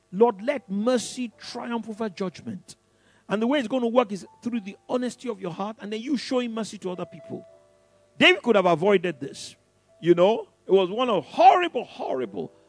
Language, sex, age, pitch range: English, male, 50-69, 160-245 Hz